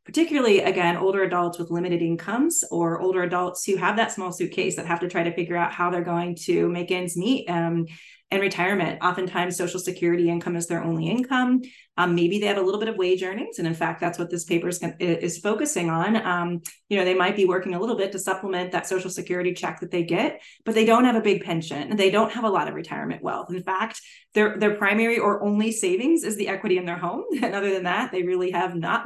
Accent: American